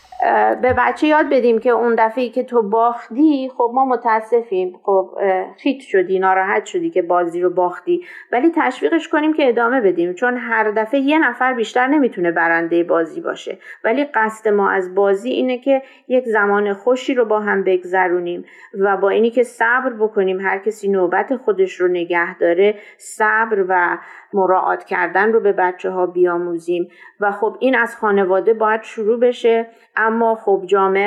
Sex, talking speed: female, 165 wpm